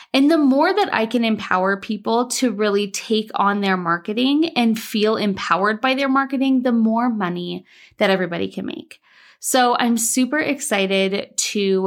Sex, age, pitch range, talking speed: female, 20-39, 205-270 Hz, 160 wpm